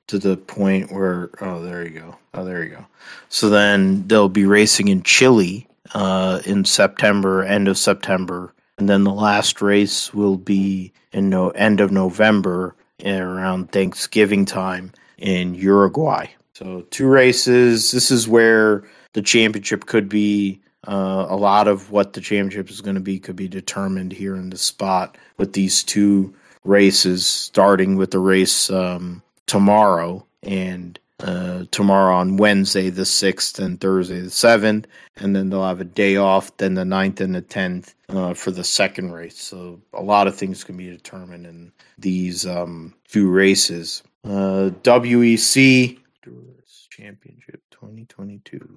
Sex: male